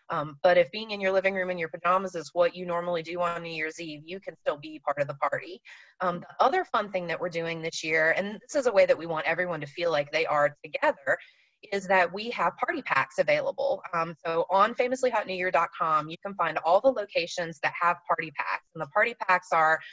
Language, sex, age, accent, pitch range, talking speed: English, female, 30-49, American, 165-200 Hz, 240 wpm